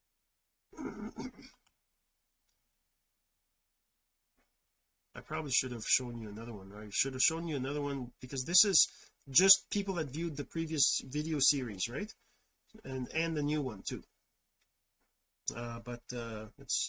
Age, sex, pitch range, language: 40-59, male, 125-160 Hz, English